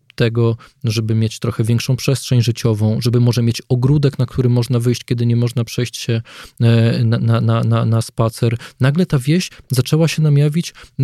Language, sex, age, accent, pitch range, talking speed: Polish, male, 20-39, native, 120-140 Hz, 170 wpm